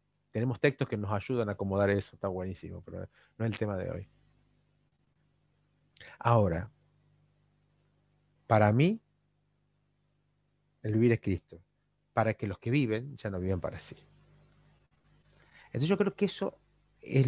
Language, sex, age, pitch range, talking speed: Spanish, male, 30-49, 115-145 Hz, 140 wpm